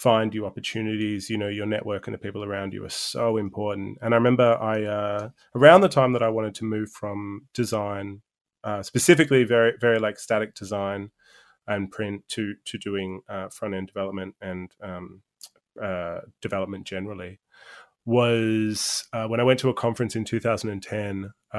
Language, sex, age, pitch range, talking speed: English, male, 20-39, 100-120 Hz, 170 wpm